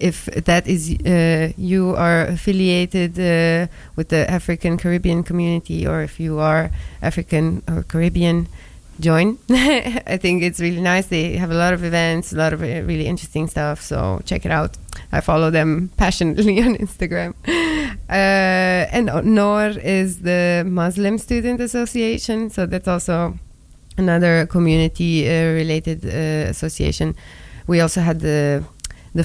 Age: 20-39